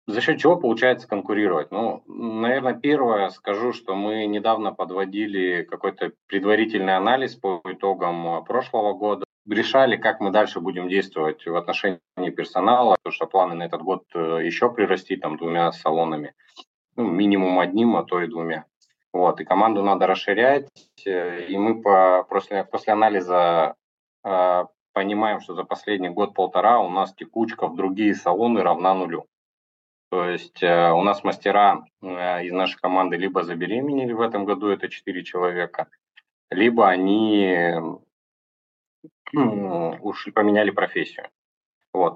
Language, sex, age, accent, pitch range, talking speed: Russian, male, 20-39, native, 85-105 Hz, 130 wpm